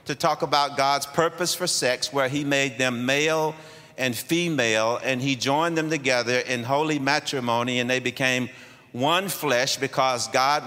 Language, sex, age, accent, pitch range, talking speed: English, male, 50-69, American, 125-150 Hz, 165 wpm